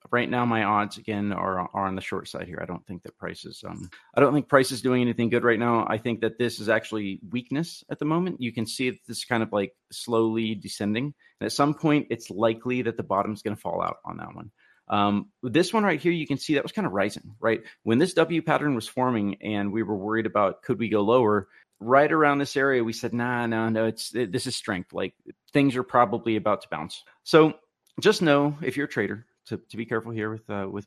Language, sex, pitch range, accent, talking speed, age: English, male, 105-140 Hz, American, 250 wpm, 30-49